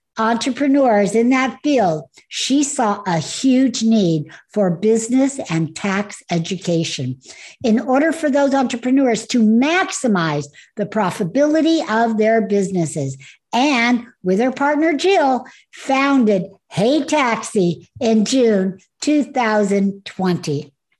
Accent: American